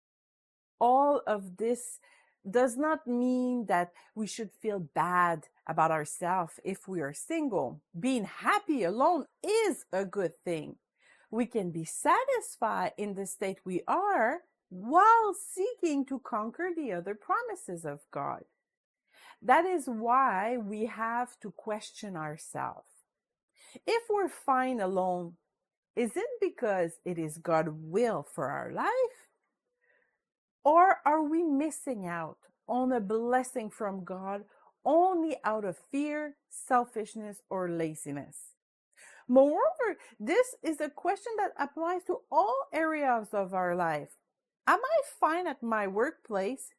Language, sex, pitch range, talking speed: English, female, 195-320 Hz, 130 wpm